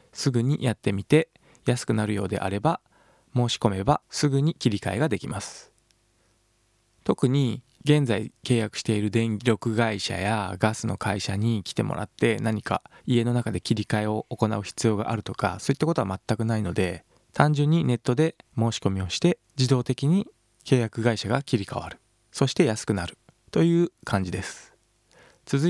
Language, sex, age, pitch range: Japanese, male, 20-39, 110-140 Hz